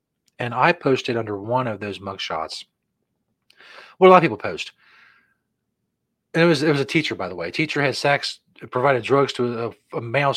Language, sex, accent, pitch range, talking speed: English, male, American, 115-150 Hz, 190 wpm